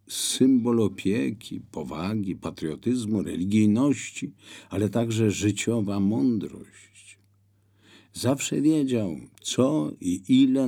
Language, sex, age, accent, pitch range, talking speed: Polish, male, 50-69, native, 95-110 Hz, 80 wpm